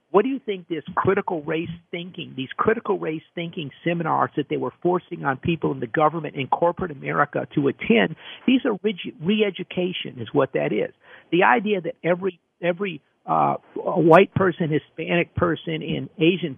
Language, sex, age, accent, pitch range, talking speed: English, male, 50-69, American, 155-185 Hz, 170 wpm